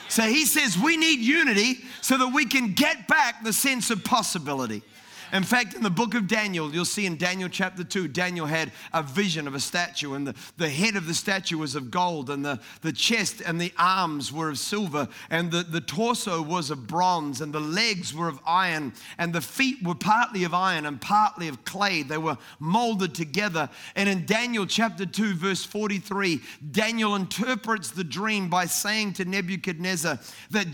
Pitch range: 180-235 Hz